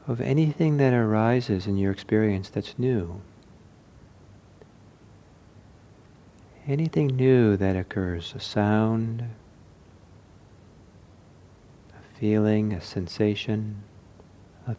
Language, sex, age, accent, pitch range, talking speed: English, male, 50-69, American, 95-115 Hz, 80 wpm